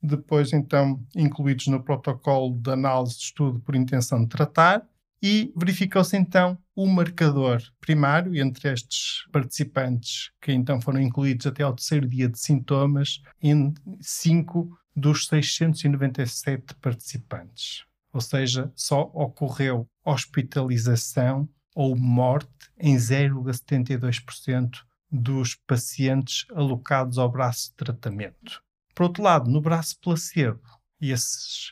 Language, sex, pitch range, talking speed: Portuguese, male, 130-155 Hz, 115 wpm